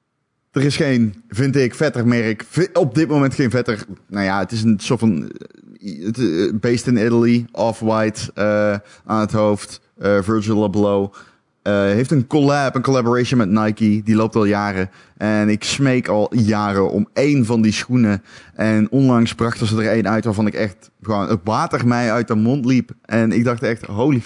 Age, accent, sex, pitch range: 20-39, Dutch, male, 105-125 Hz